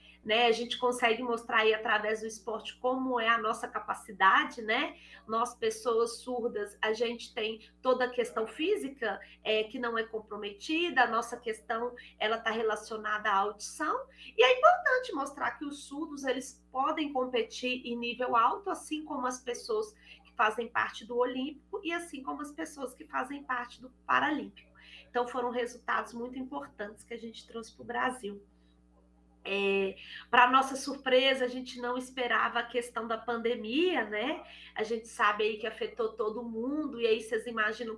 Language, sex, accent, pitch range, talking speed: Portuguese, female, Brazilian, 220-255 Hz, 160 wpm